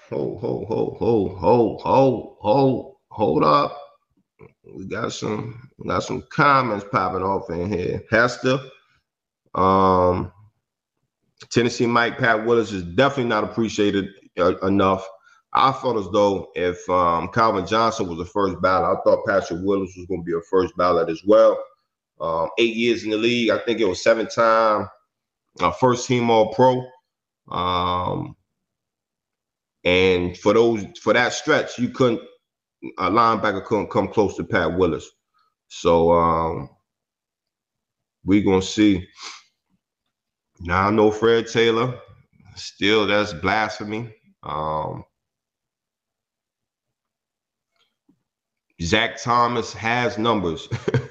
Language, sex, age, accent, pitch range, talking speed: English, male, 30-49, American, 95-120 Hz, 125 wpm